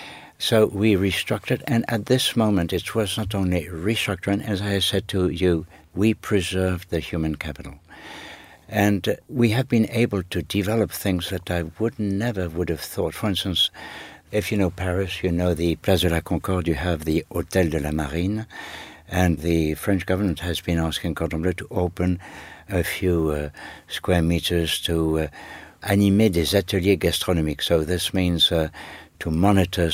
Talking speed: 170 wpm